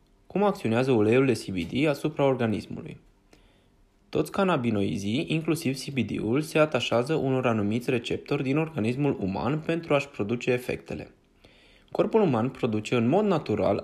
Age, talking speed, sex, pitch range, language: 20-39, 120 wpm, male, 115-150 Hz, Romanian